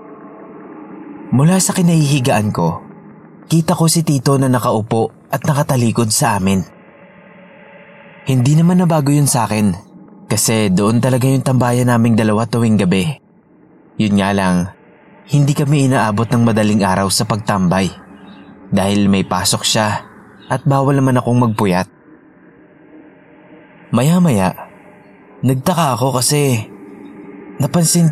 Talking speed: 115 wpm